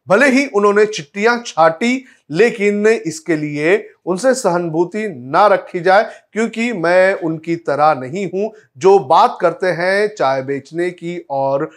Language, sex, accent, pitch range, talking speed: Hindi, male, native, 155-200 Hz, 140 wpm